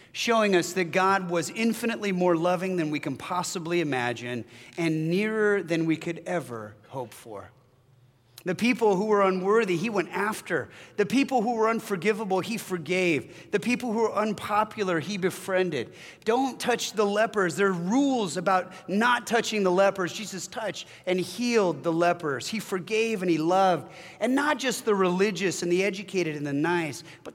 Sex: male